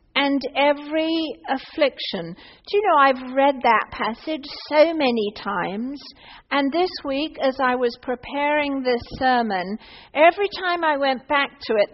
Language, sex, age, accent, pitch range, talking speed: English, female, 50-69, British, 250-315 Hz, 145 wpm